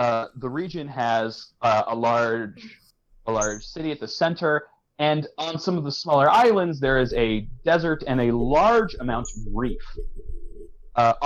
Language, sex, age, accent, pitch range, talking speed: English, male, 30-49, American, 120-170 Hz, 165 wpm